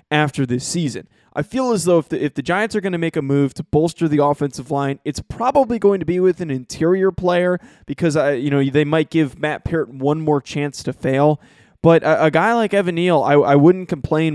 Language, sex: English, male